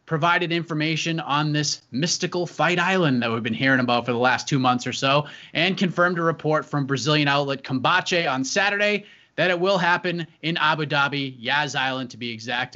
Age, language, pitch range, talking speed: 30-49, English, 135-170 Hz, 195 wpm